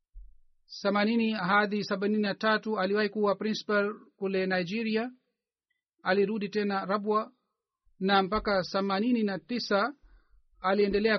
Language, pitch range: Swahili, 195-220 Hz